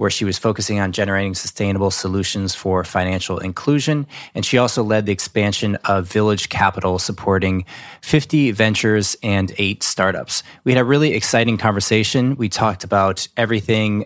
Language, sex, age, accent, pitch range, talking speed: English, male, 20-39, American, 95-120 Hz, 155 wpm